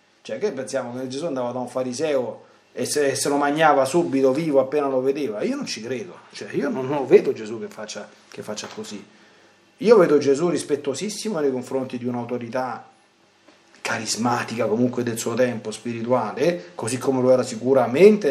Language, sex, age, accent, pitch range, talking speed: Italian, male, 40-59, native, 130-170 Hz, 165 wpm